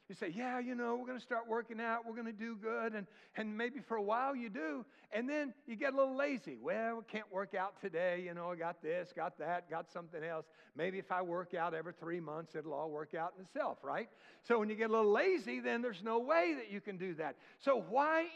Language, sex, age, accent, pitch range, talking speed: English, male, 60-79, American, 205-285 Hz, 260 wpm